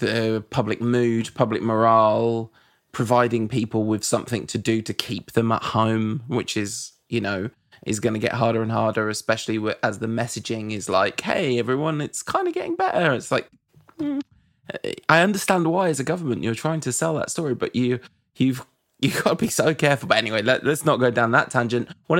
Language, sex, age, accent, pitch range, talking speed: English, male, 20-39, British, 110-130 Hz, 200 wpm